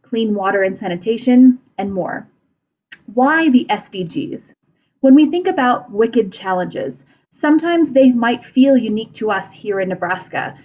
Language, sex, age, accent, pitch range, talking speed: English, female, 20-39, American, 190-265 Hz, 140 wpm